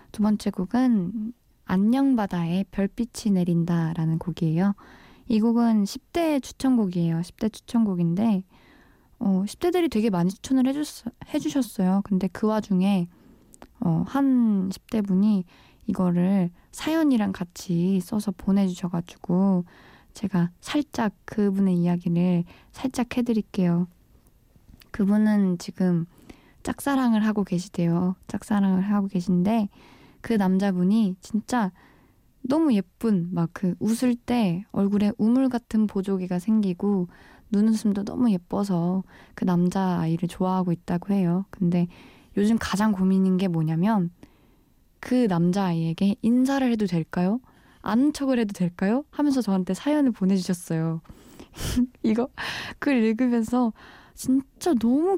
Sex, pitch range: female, 185-235 Hz